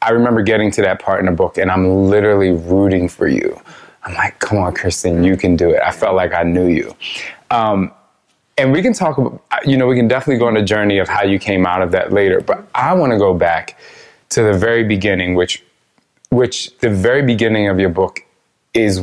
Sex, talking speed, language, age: male, 225 wpm, English, 20-39